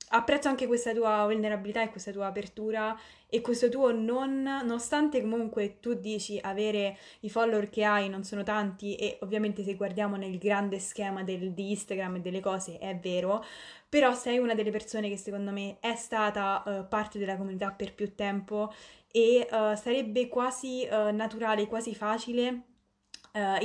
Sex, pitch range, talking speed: female, 195-225 Hz, 155 wpm